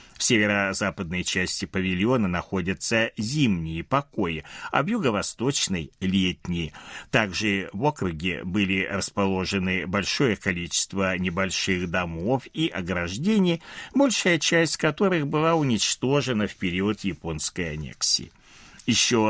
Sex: male